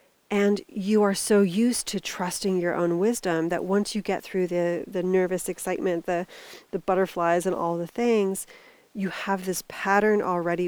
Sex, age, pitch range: female, 30-49, 170-205 Hz